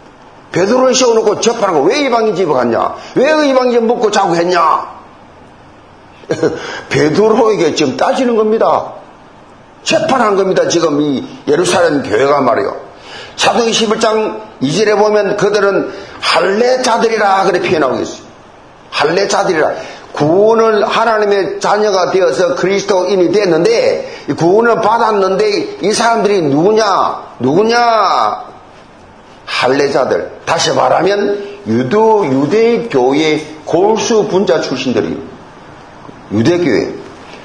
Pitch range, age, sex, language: 195-240 Hz, 40-59, male, Korean